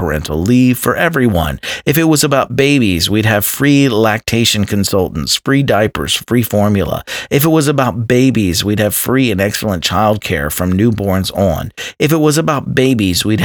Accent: American